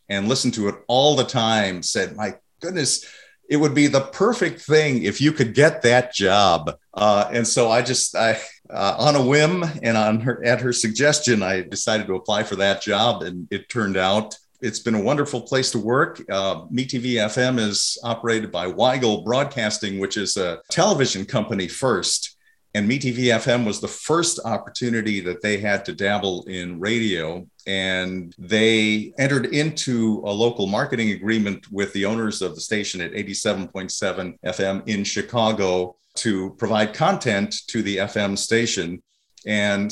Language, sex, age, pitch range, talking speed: English, male, 40-59, 100-125 Hz, 165 wpm